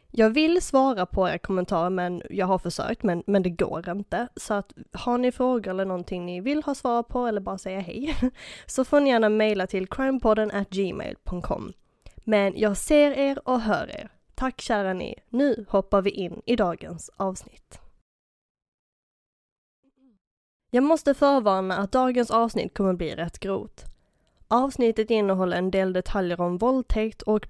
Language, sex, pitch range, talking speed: Swedish, female, 185-240 Hz, 165 wpm